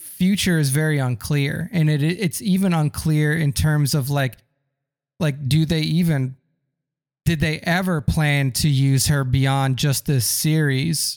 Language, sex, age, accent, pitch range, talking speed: English, male, 20-39, American, 135-165 Hz, 150 wpm